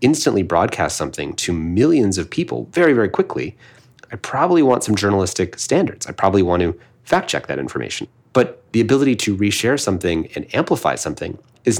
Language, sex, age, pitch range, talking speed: English, male, 30-49, 90-115 Hz, 175 wpm